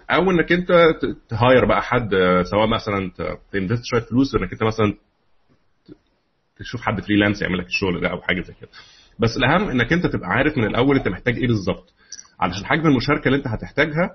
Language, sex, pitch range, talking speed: Arabic, male, 105-135 Hz, 180 wpm